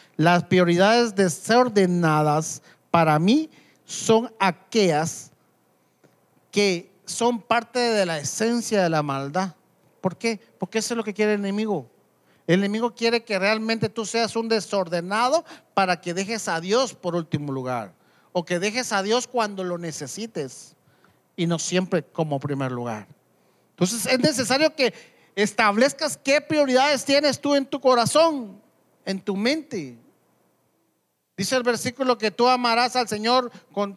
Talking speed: 145 wpm